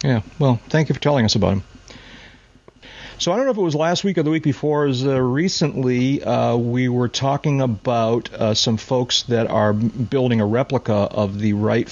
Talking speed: 200 wpm